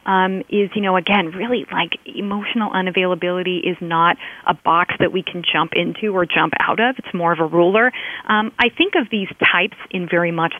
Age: 30-49